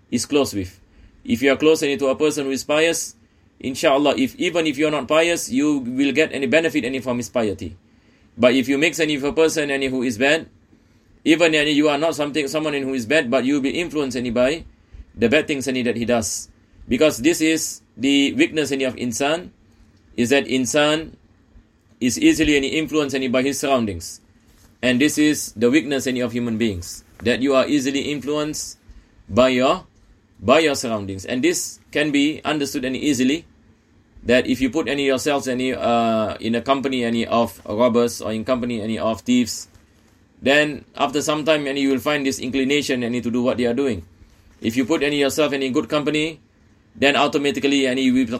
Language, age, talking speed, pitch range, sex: English, 30-49, 200 wpm, 115-150 Hz, male